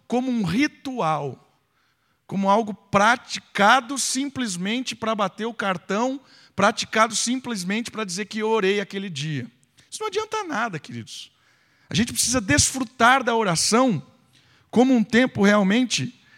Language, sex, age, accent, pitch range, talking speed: Portuguese, male, 50-69, Brazilian, 140-215 Hz, 130 wpm